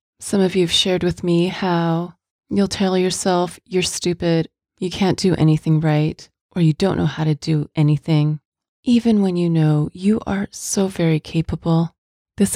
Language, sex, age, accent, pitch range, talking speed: English, female, 30-49, American, 155-185 Hz, 170 wpm